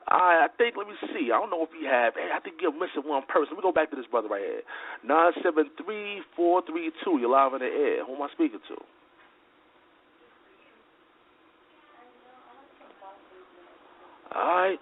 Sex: male